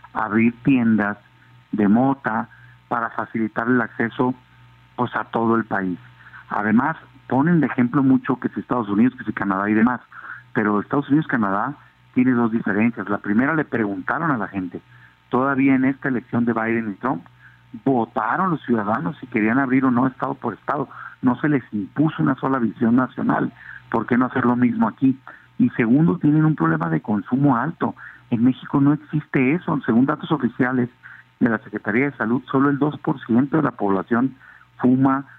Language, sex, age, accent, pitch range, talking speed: English, male, 50-69, Mexican, 115-140 Hz, 180 wpm